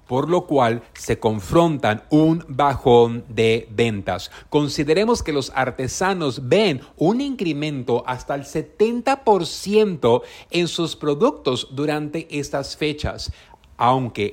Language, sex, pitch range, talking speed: Spanish, male, 125-180 Hz, 110 wpm